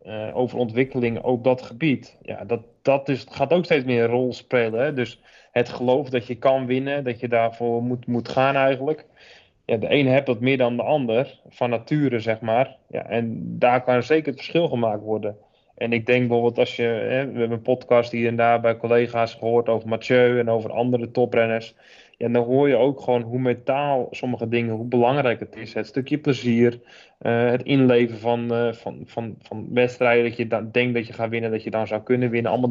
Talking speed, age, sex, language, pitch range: 220 wpm, 20-39, male, Dutch, 115-125 Hz